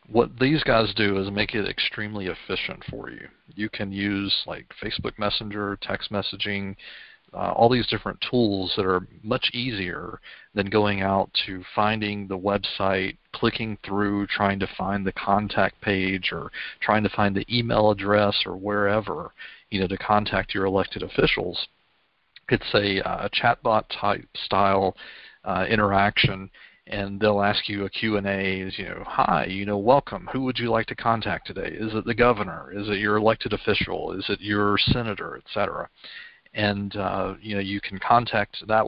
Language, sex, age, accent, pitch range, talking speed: English, male, 40-59, American, 100-110 Hz, 165 wpm